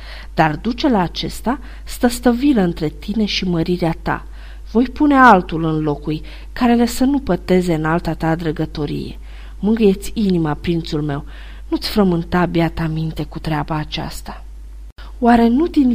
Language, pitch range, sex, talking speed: Romanian, 170-230 Hz, female, 145 wpm